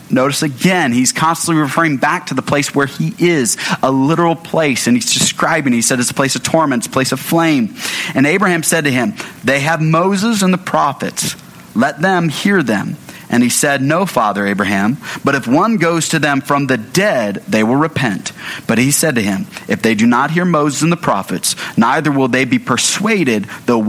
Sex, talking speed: male, 205 wpm